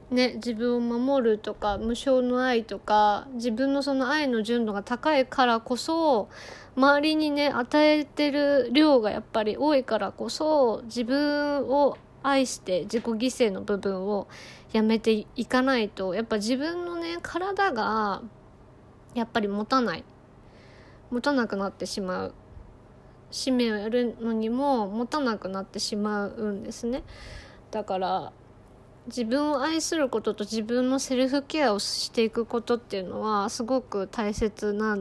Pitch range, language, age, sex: 205-265 Hz, Japanese, 20-39, female